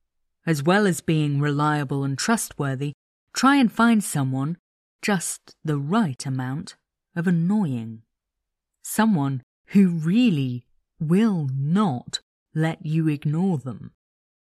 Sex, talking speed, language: female, 110 wpm, English